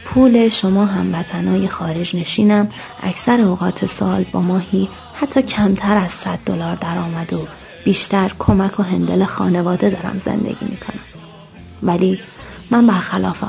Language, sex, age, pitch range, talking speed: English, female, 30-49, 175-205 Hz, 135 wpm